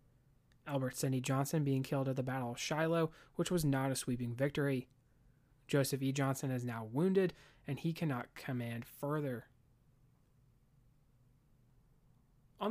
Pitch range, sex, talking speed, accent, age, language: 130-155 Hz, male, 130 wpm, American, 30-49, English